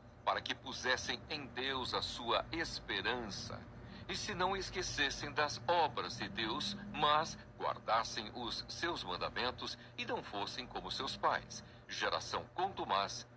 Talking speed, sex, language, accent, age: 130 wpm, male, Portuguese, Brazilian, 60-79